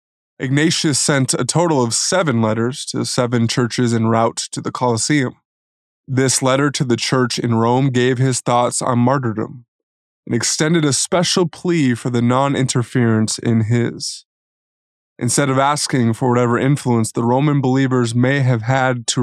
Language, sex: English, male